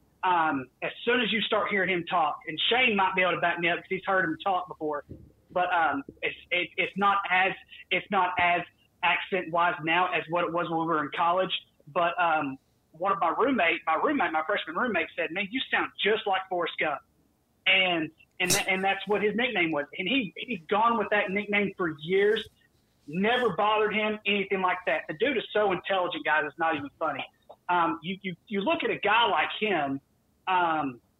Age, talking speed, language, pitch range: 30-49, 210 wpm, English, 155-190 Hz